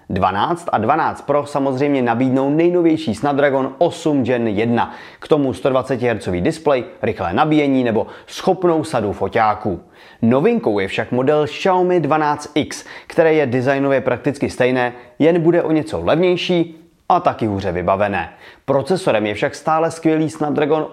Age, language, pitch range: 30-49, Czech, 120-165 Hz